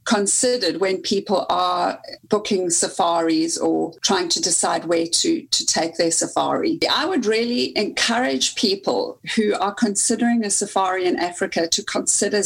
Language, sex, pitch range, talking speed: English, female, 180-225 Hz, 145 wpm